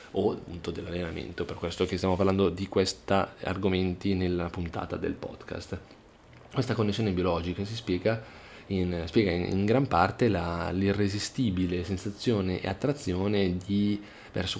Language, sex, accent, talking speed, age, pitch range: Italian, male, native, 135 wpm, 20-39, 90-105 Hz